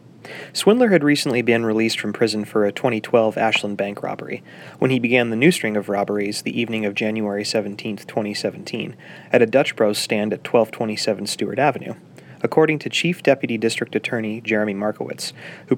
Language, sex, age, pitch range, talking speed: English, male, 30-49, 105-130 Hz, 170 wpm